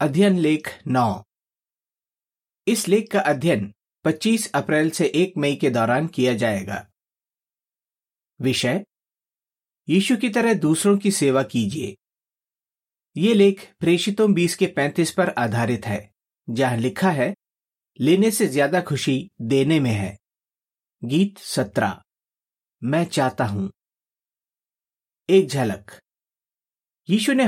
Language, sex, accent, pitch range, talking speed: Hindi, male, native, 130-195 Hz, 115 wpm